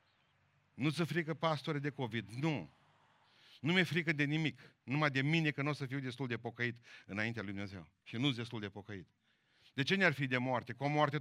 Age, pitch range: 50-69, 105-140 Hz